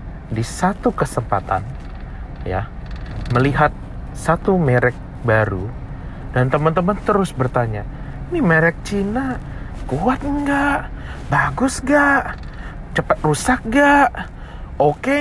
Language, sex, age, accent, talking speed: Indonesian, male, 30-49, native, 95 wpm